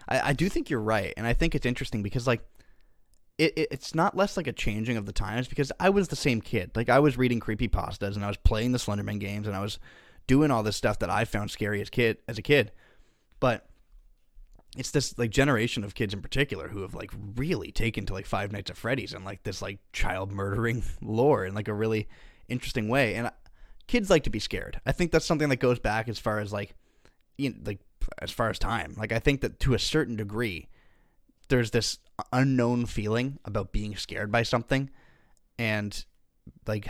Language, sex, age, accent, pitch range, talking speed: English, male, 10-29, American, 105-130 Hz, 220 wpm